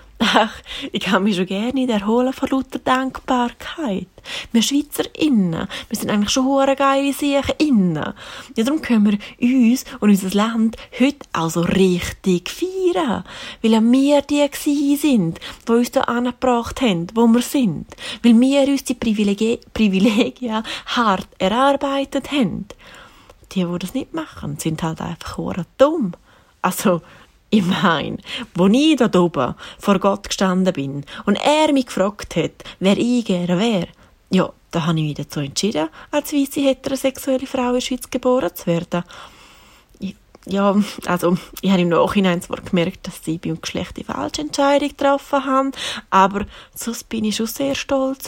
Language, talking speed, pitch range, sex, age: English, 155 wpm, 190-270 Hz, female, 30-49